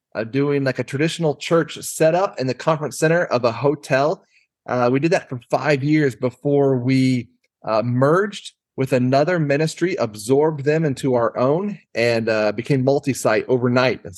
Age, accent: 30-49, American